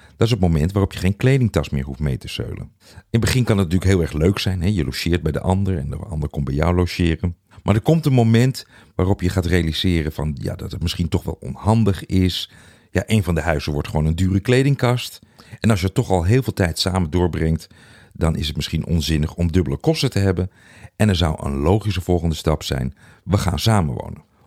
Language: Dutch